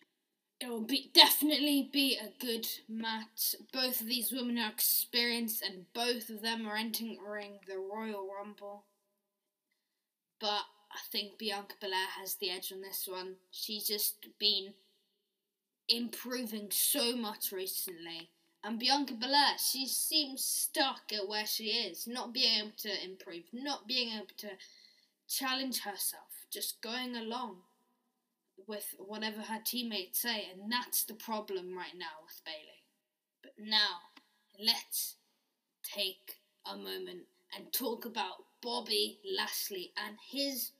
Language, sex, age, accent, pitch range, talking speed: English, female, 10-29, British, 195-245 Hz, 135 wpm